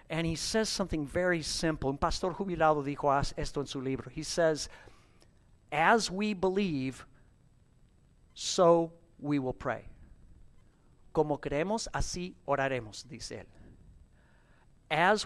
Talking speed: 120 wpm